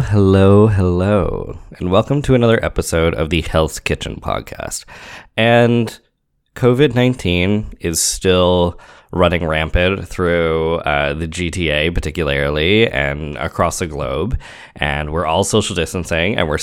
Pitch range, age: 80-105 Hz, 20-39